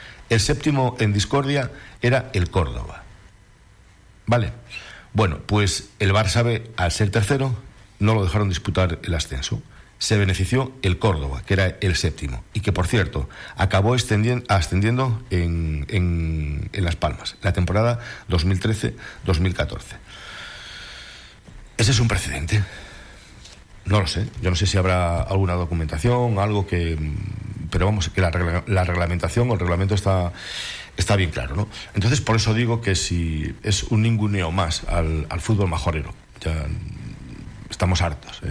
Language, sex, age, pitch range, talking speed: Spanish, male, 60-79, 85-105 Hz, 140 wpm